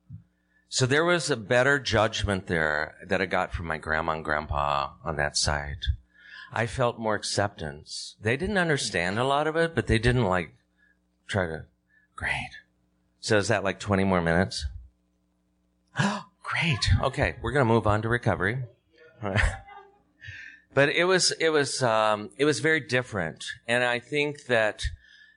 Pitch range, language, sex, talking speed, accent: 80-115 Hz, English, male, 160 wpm, American